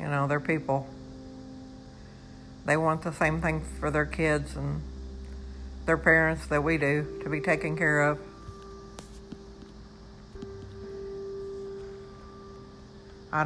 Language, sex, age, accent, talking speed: English, female, 60-79, American, 105 wpm